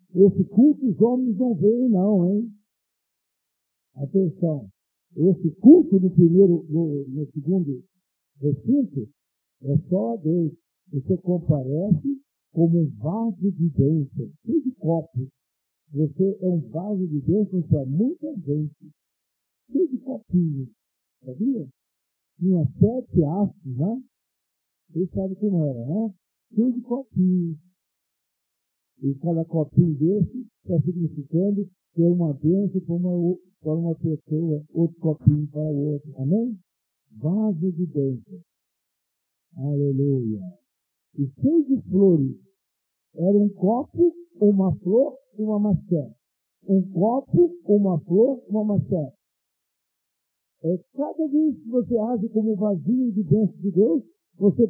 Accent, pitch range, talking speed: Brazilian, 150-210 Hz, 125 wpm